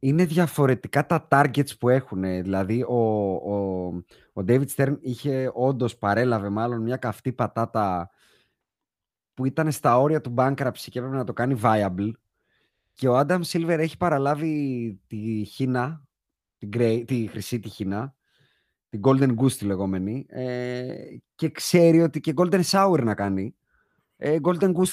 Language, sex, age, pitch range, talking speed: Greek, male, 30-49, 110-155 Hz, 150 wpm